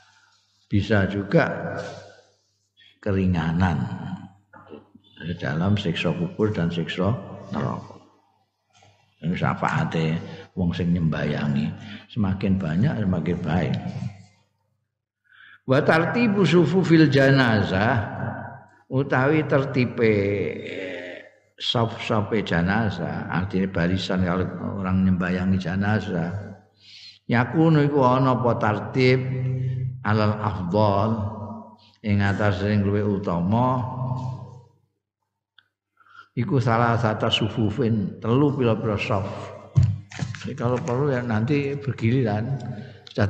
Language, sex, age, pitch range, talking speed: Indonesian, male, 50-69, 100-130 Hz, 75 wpm